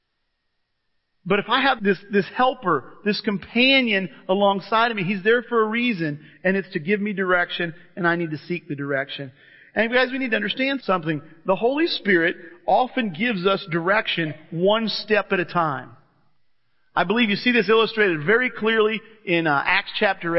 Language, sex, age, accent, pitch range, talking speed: English, male, 40-59, American, 175-230 Hz, 180 wpm